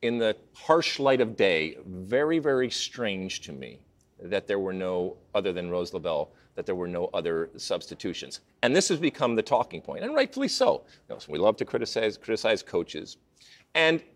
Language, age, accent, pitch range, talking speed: English, 40-59, American, 115-185 Hz, 180 wpm